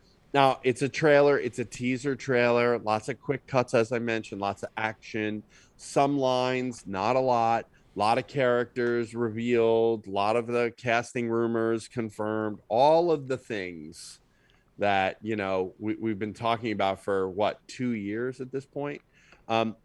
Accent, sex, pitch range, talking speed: American, male, 100-130 Hz, 165 wpm